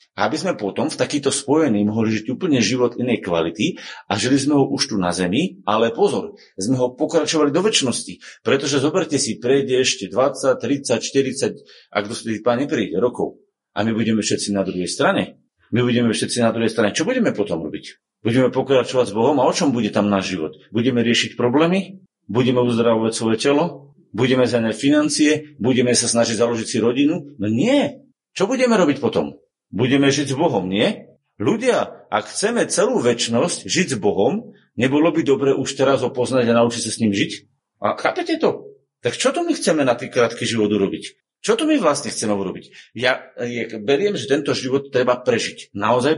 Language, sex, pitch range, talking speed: Slovak, male, 110-145 Hz, 185 wpm